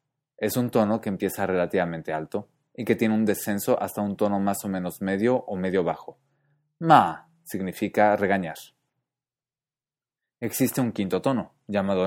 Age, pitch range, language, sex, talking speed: 20-39, 95-120 Hz, English, male, 150 wpm